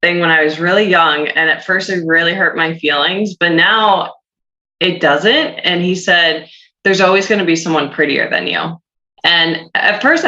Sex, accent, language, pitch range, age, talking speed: female, American, English, 155-185 Hz, 20-39, 195 wpm